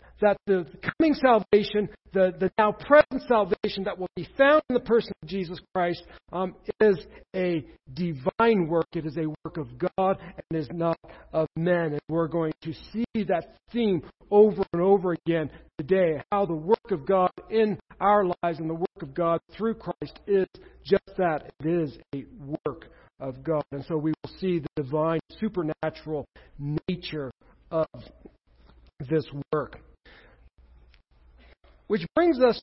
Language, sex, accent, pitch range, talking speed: English, male, American, 160-215 Hz, 160 wpm